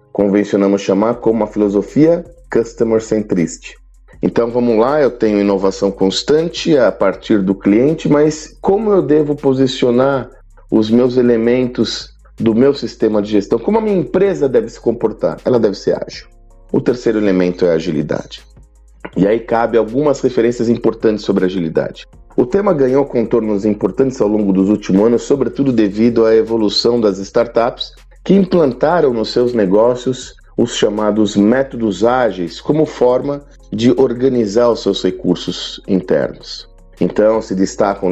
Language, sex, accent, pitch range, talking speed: Portuguese, male, Brazilian, 100-130 Hz, 145 wpm